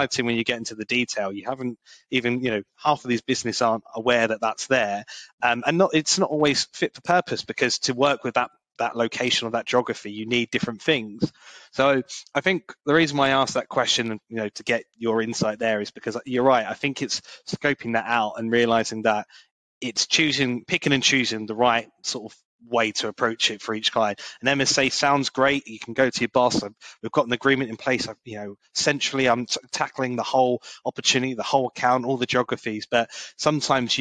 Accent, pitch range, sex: British, 110-135 Hz, male